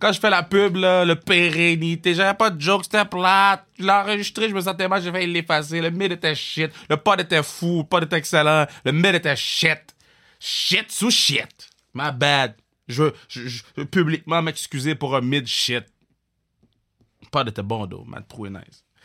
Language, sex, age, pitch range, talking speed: French, male, 20-39, 100-145 Hz, 190 wpm